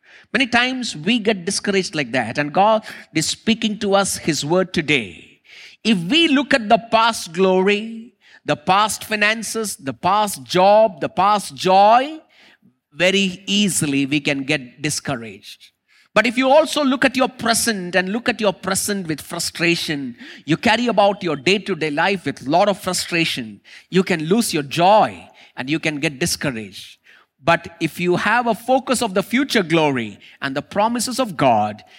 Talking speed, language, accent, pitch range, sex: 165 wpm, English, Indian, 160-230 Hz, male